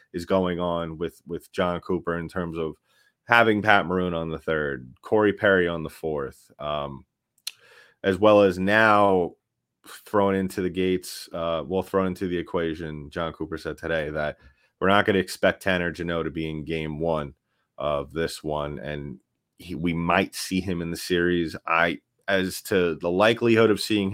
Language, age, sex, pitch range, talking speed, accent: English, 30-49, male, 80-95 Hz, 180 wpm, American